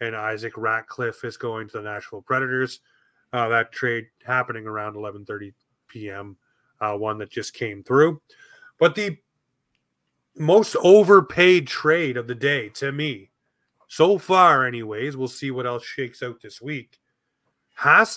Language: English